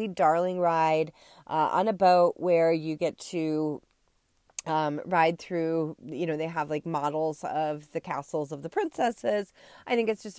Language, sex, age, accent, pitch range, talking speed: English, female, 30-49, American, 160-190 Hz, 170 wpm